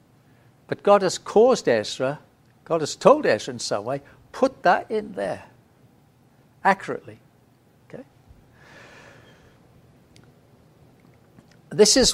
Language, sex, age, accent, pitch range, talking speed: English, male, 60-79, British, 125-200 Hz, 100 wpm